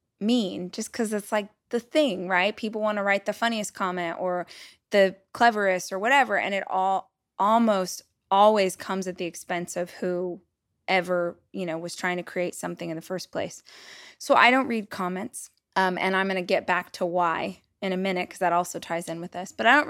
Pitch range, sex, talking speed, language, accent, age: 180-210 Hz, female, 210 wpm, English, American, 20-39